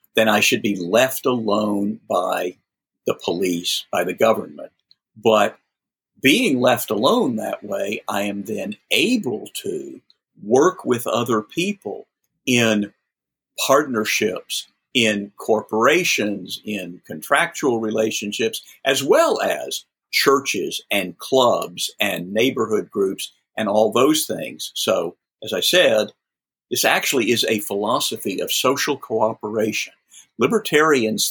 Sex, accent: male, American